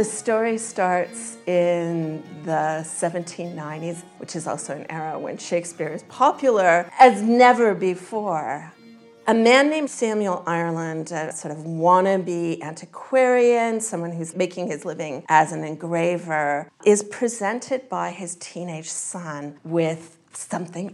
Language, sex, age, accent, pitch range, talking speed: English, female, 40-59, American, 165-210 Hz, 125 wpm